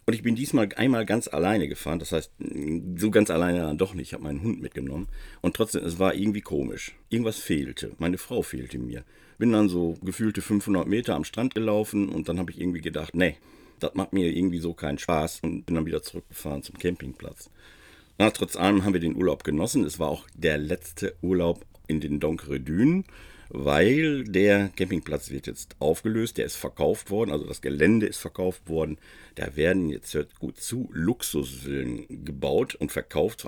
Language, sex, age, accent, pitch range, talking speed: German, male, 50-69, German, 75-95 Hz, 190 wpm